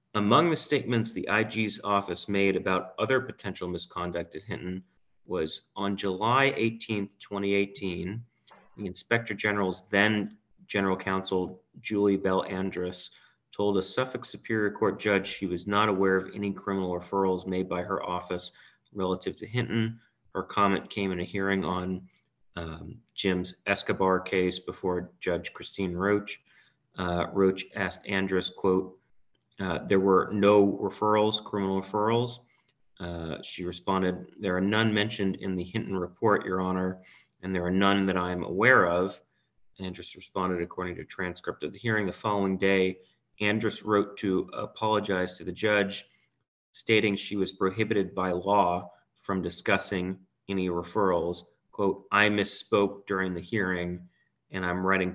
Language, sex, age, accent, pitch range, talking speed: English, male, 30-49, American, 90-105 Hz, 145 wpm